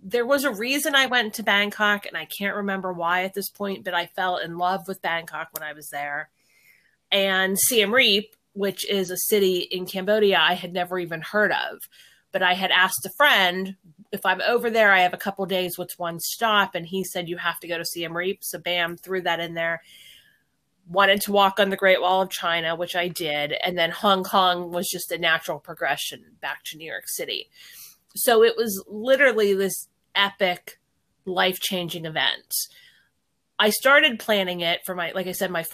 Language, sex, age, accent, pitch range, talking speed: English, female, 30-49, American, 170-200 Hz, 205 wpm